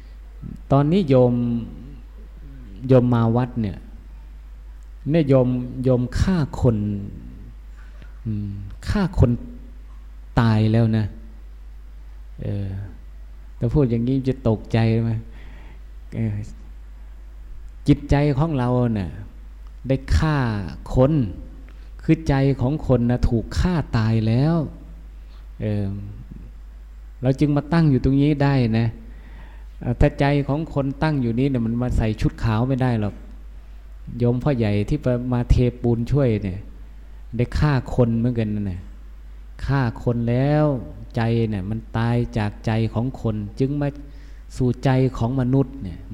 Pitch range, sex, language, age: 90-130 Hz, male, Thai, 20-39